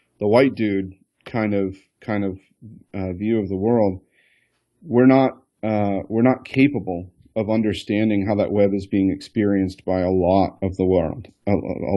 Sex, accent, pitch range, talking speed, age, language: male, American, 95-120 Hz, 165 wpm, 40-59, English